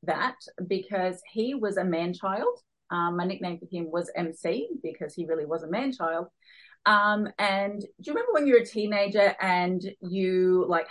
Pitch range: 175-215 Hz